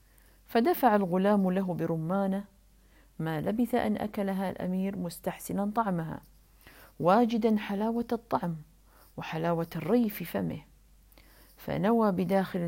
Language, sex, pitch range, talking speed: Arabic, female, 170-230 Hz, 95 wpm